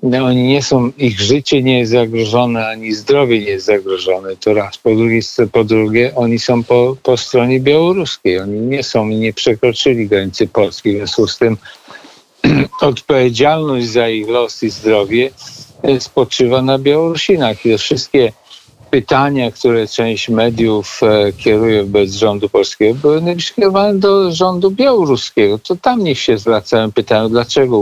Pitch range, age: 105-125 Hz, 50-69